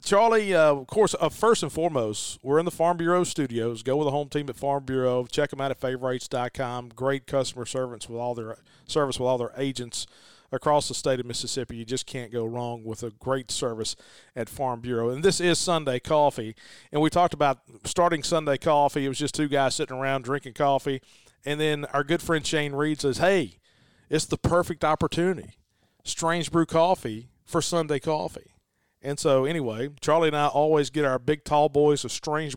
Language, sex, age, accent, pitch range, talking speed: English, male, 40-59, American, 125-155 Hz, 200 wpm